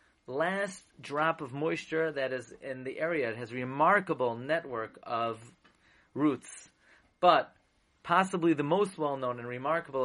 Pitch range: 130-160 Hz